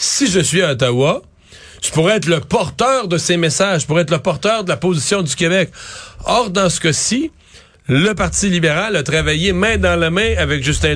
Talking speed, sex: 205 wpm, male